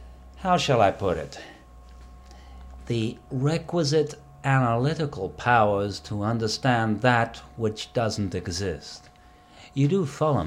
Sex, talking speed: male, 105 wpm